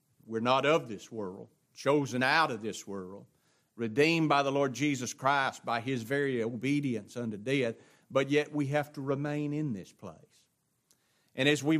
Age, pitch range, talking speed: 50-69, 130-180 Hz, 175 wpm